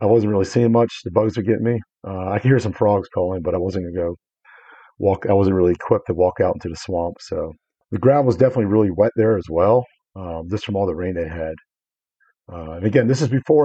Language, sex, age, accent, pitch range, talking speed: English, male, 40-59, American, 90-115 Hz, 255 wpm